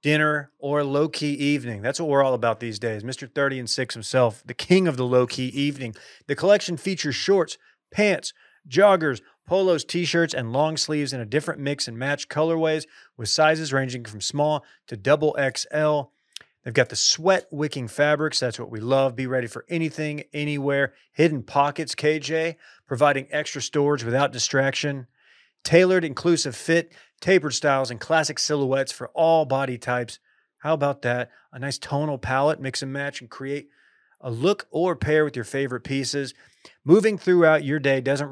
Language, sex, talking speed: English, male, 170 wpm